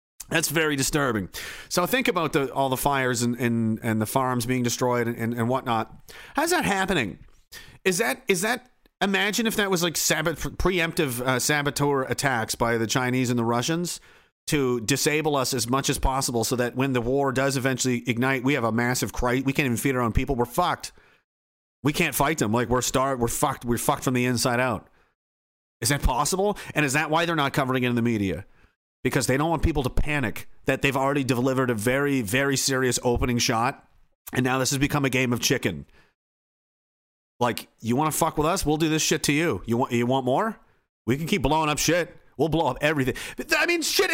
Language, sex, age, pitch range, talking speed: English, male, 40-59, 125-175 Hz, 215 wpm